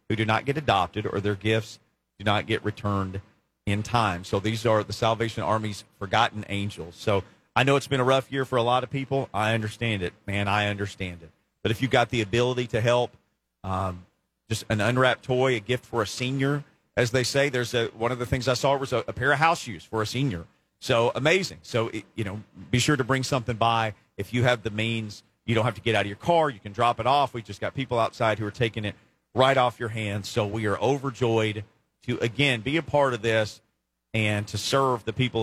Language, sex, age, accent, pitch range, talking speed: English, male, 40-59, American, 105-135 Hz, 240 wpm